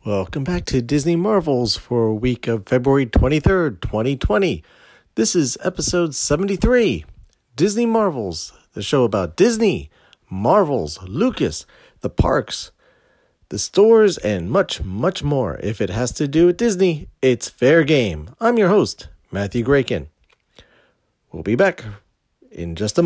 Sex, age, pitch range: male, 40-59, 105-170 Hz